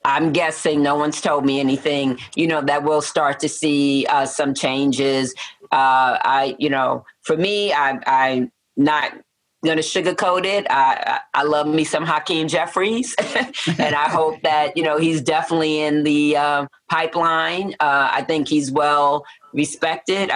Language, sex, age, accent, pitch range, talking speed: English, female, 40-59, American, 140-165 Hz, 160 wpm